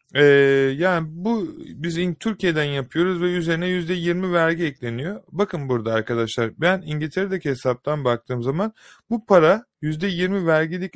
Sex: male